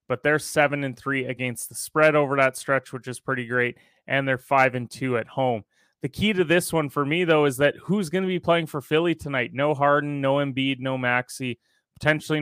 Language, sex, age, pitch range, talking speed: English, male, 20-39, 125-150 Hz, 225 wpm